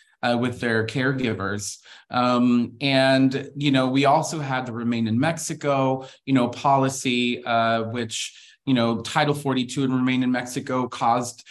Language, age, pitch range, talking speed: English, 30-49, 115-135 Hz, 150 wpm